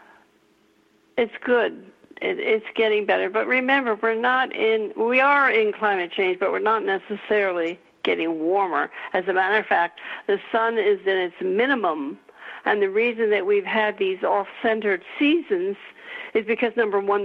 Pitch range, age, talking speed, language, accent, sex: 185-255 Hz, 60-79, 160 wpm, English, American, female